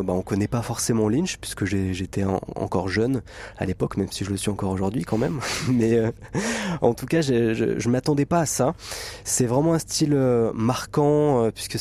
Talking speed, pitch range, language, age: 195 wpm, 105-135 Hz, French, 20-39